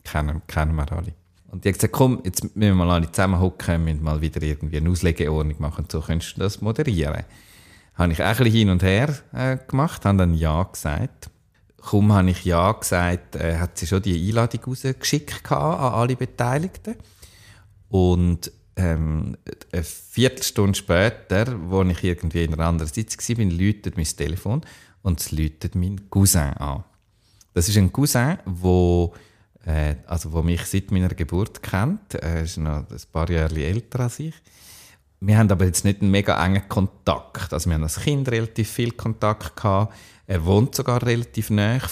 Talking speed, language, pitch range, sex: 170 wpm, German, 85-110 Hz, male